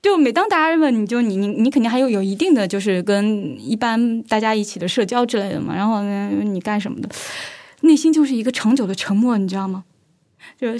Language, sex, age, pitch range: Chinese, female, 20-39, 205-290 Hz